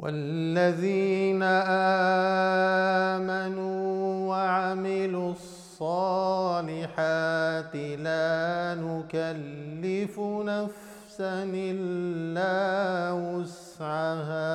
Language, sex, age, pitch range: Arabic, male, 50-69, 180-220 Hz